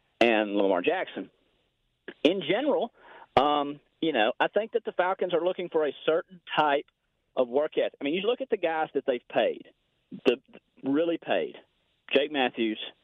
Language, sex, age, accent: English, male, 40-59, American